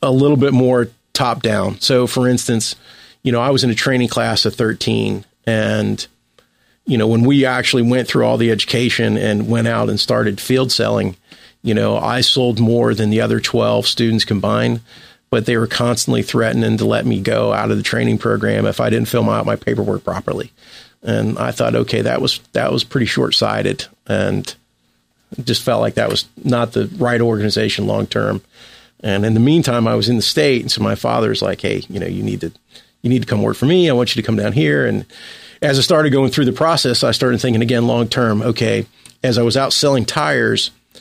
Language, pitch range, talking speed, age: English, 110-125 Hz, 215 wpm, 40-59